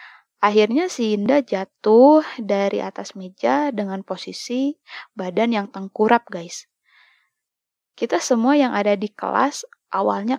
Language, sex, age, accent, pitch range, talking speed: Indonesian, female, 20-39, native, 200-250 Hz, 115 wpm